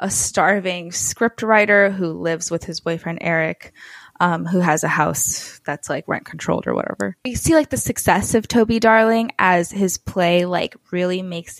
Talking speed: 180 wpm